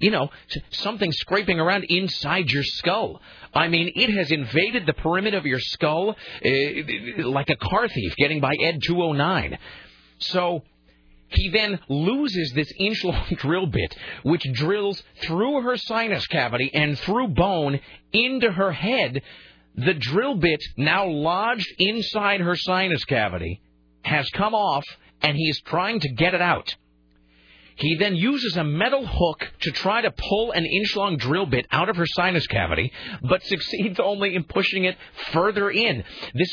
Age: 40-59